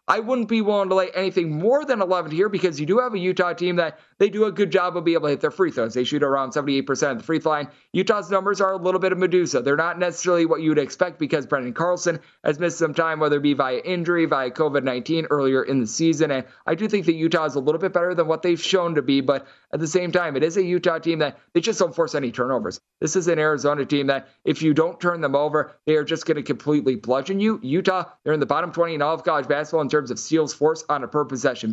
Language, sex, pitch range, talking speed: English, male, 145-170 Hz, 275 wpm